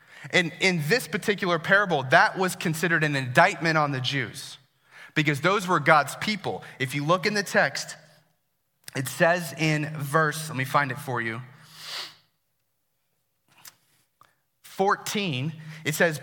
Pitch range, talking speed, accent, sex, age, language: 140-190 Hz, 135 wpm, American, male, 30-49, English